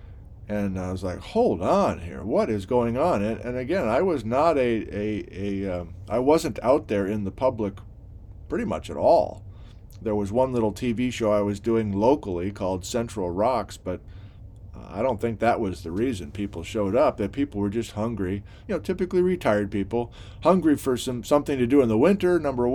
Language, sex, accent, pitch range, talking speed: English, male, American, 100-125 Hz, 200 wpm